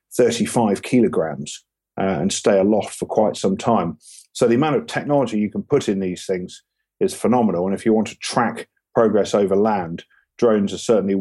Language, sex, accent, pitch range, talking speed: English, male, British, 100-115 Hz, 185 wpm